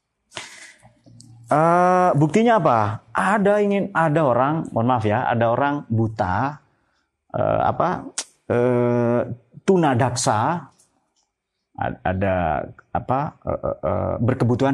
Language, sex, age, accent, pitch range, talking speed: Indonesian, male, 30-49, native, 110-170 Hz, 90 wpm